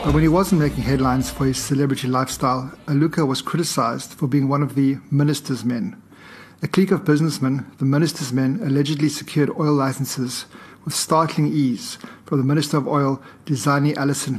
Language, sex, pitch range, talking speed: English, male, 135-155 Hz, 170 wpm